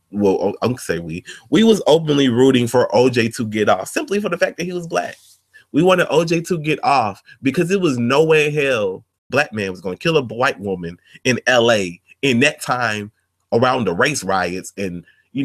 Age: 30-49